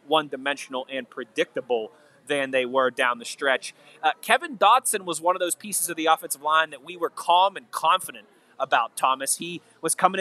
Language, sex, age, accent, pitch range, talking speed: English, male, 30-49, American, 155-200 Hz, 190 wpm